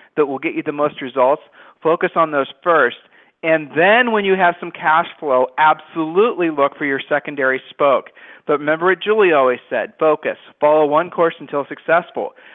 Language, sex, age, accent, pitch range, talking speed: English, male, 40-59, American, 140-165 Hz, 175 wpm